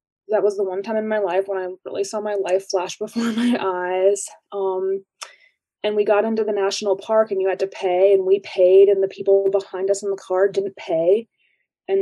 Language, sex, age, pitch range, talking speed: English, female, 20-39, 195-230 Hz, 225 wpm